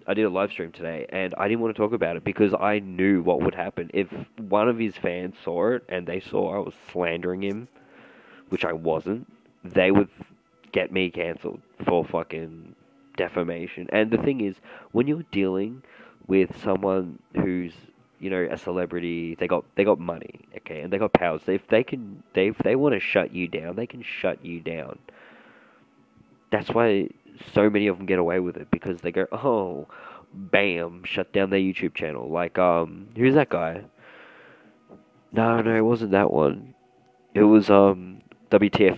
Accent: Australian